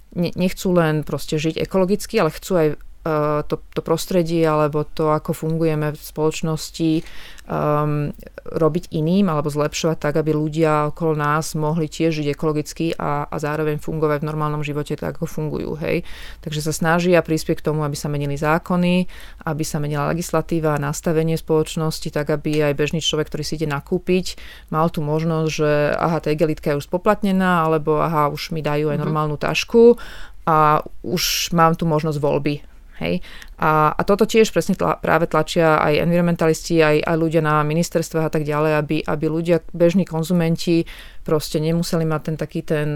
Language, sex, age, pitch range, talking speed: Slovak, female, 30-49, 150-170 Hz, 170 wpm